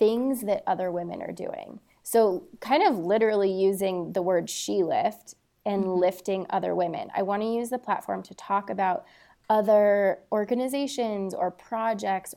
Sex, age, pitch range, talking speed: female, 20-39, 190-225 Hz, 150 wpm